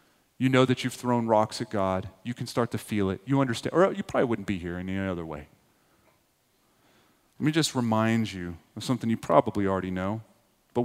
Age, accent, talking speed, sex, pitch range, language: 30-49, American, 205 wpm, male, 100-130 Hz, English